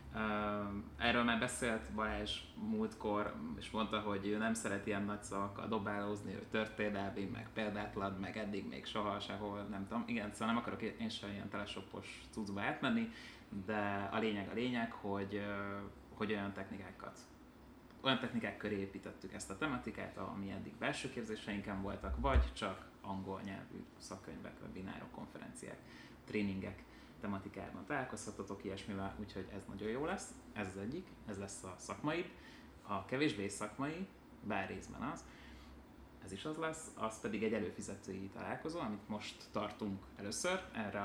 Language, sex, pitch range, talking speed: Hungarian, male, 100-110 Hz, 150 wpm